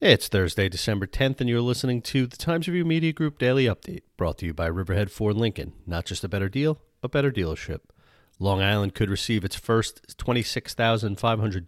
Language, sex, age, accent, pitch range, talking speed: English, male, 40-59, American, 90-110 Hz, 190 wpm